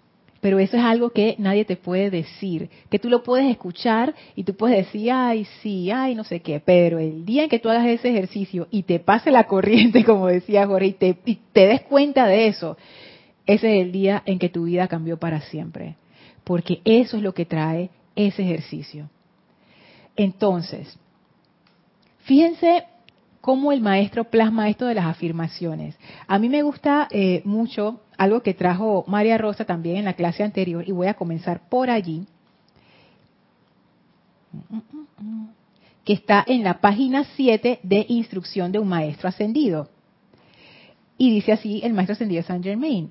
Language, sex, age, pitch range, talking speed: Spanish, female, 30-49, 180-235 Hz, 165 wpm